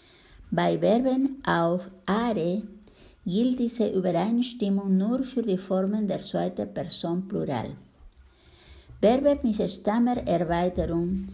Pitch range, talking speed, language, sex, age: 170-235 Hz, 95 wpm, Italian, female, 50-69